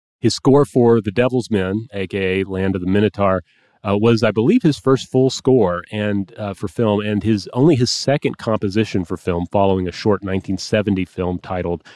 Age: 30-49